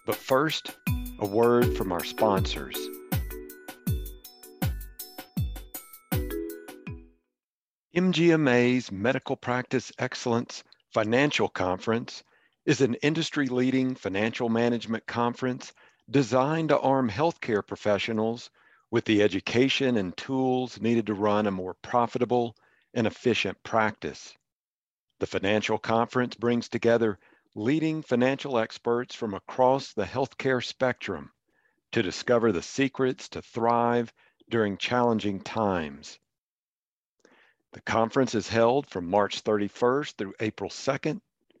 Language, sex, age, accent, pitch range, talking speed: English, male, 50-69, American, 105-130 Hz, 100 wpm